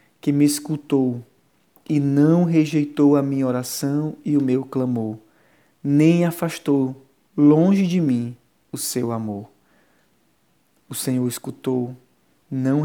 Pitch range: 125-145 Hz